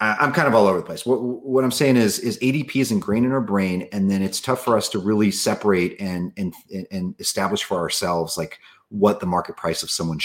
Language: English